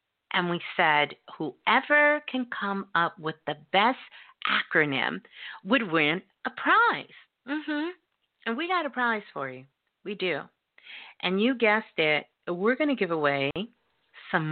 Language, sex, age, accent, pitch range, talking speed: English, female, 40-59, American, 165-240 Hz, 145 wpm